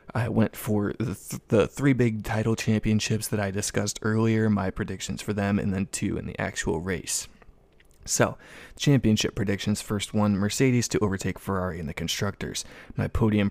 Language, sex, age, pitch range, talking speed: English, male, 20-39, 95-110 Hz, 170 wpm